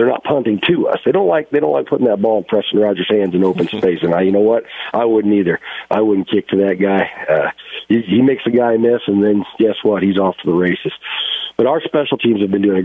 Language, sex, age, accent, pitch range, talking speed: English, male, 50-69, American, 95-115 Hz, 275 wpm